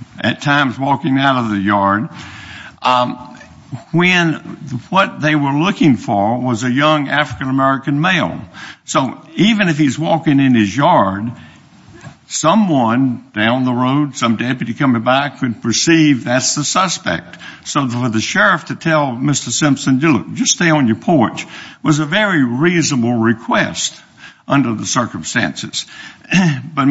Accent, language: American, English